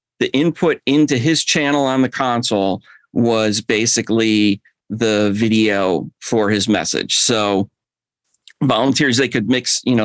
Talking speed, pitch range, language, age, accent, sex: 130 wpm, 105-130 Hz, English, 40-59, American, male